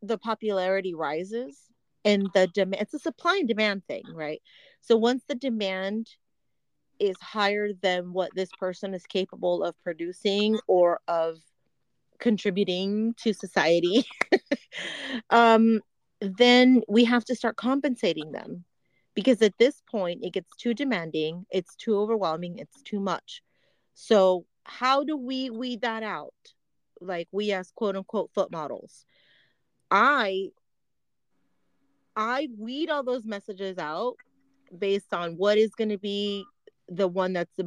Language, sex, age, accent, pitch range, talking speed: English, female, 30-49, American, 185-240 Hz, 135 wpm